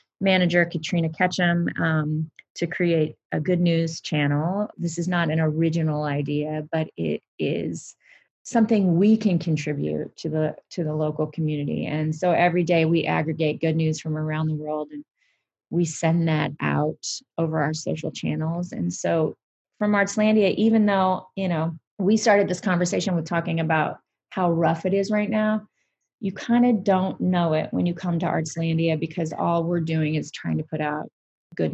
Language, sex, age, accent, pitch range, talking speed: English, female, 30-49, American, 155-190 Hz, 175 wpm